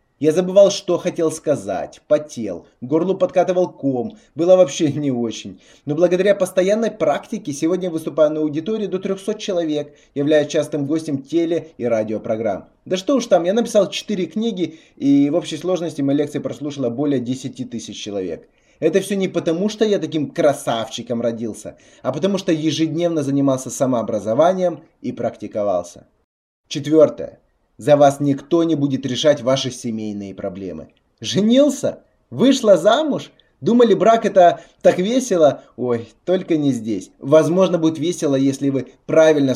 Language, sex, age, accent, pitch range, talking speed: Russian, male, 20-39, native, 135-185 Hz, 145 wpm